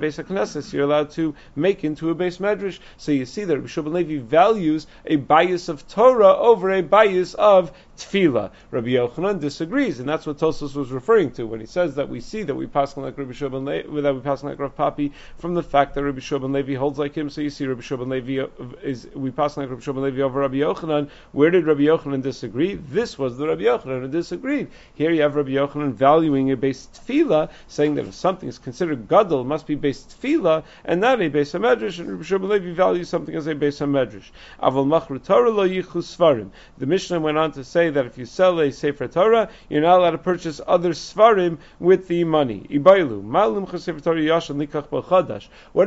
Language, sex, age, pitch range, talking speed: English, male, 40-59, 145-185 Hz, 205 wpm